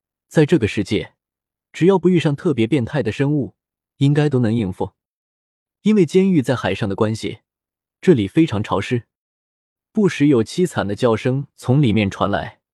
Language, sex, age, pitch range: Chinese, male, 20-39, 105-160 Hz